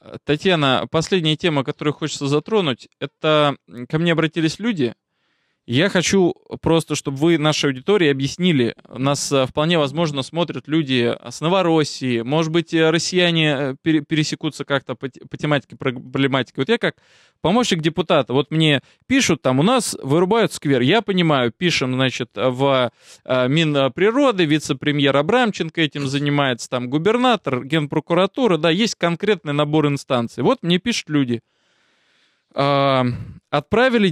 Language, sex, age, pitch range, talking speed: Russian, male, 20-39, 140-180 Hz, 125 wpm